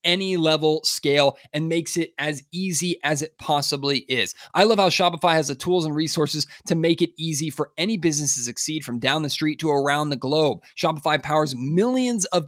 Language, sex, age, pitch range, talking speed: English, male, 20-39, 140-170 Hz, 200 wpm